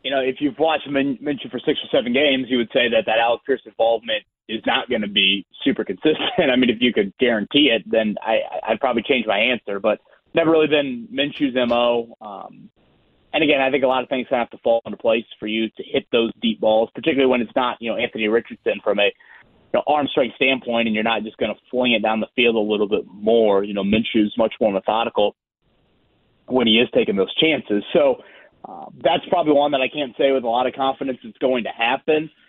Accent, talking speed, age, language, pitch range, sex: American, 235 wpm, 30-49, English, 115-145 Hz, male